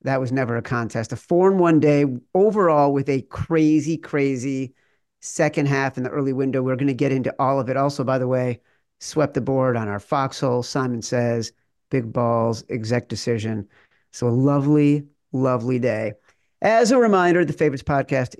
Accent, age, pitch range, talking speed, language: American, 50-69, 125-165 Hz, 185 wpm, English